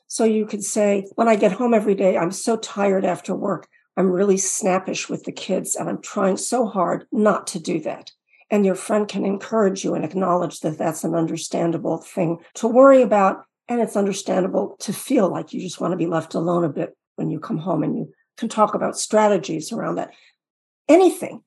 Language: English